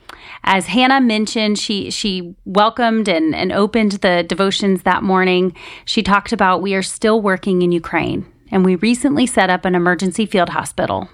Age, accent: 30-49, American